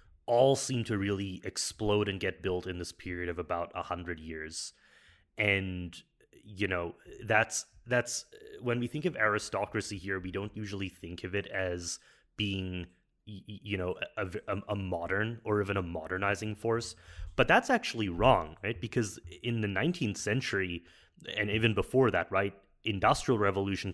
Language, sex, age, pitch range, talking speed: English, male, 30-49, 90-105 Hz, 160 wpm